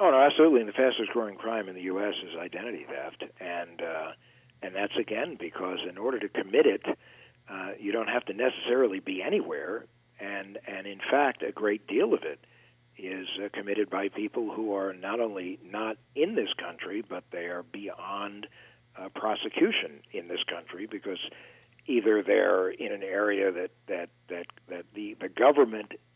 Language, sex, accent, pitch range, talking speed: English, male, American, 100-155 Hz, 175 wpm